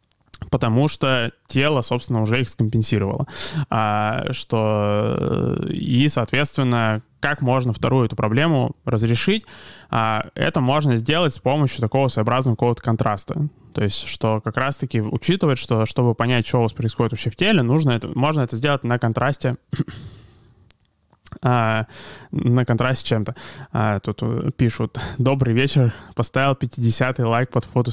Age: 20-39